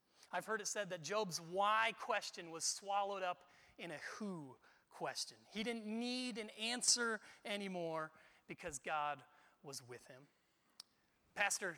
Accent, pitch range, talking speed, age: American, 185-230 Hz, 140 wpm, 30-49